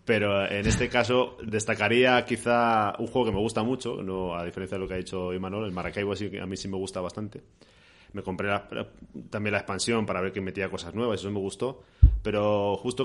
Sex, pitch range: male, 95-115 Hz